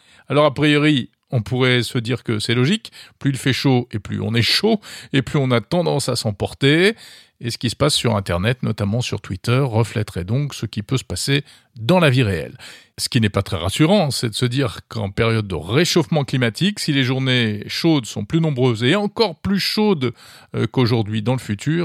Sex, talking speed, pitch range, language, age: male, 210 wpm, 115-155 Hz, French, 40-59